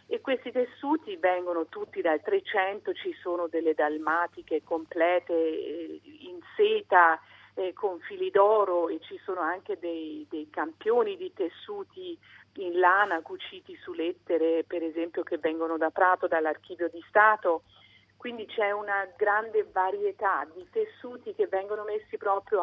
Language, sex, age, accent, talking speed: Italian, female, 40-59, native, 140 wpm